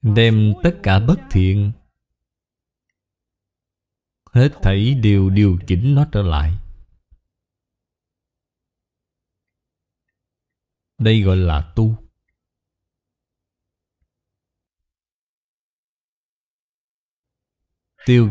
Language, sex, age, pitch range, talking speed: Vietnamese, male, 20-39, 95-125 Hz, 60 wpm